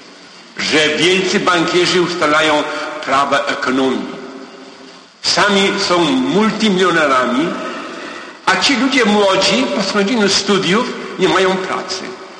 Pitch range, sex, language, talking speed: 140-205 Hz, male, Polish, 90 wpm